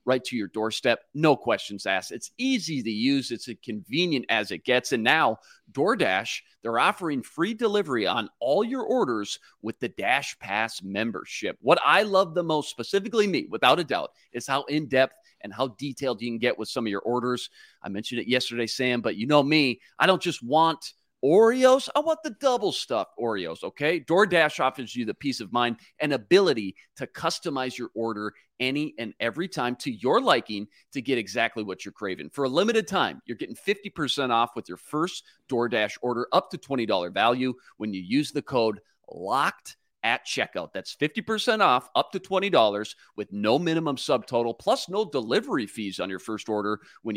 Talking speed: 195 wpm